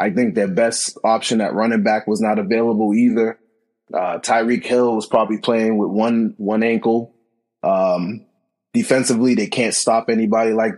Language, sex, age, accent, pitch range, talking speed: English, male, 20-39, American, 110-145 Hz, 160 wpm